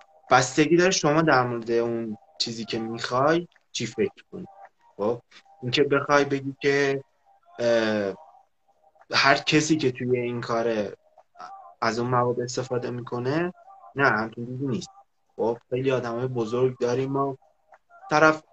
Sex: male